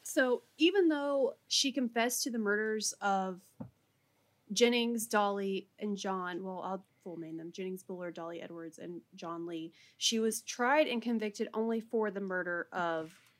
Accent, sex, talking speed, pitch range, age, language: American, female, 155 wpm, 160-220 Hz, 30-49, English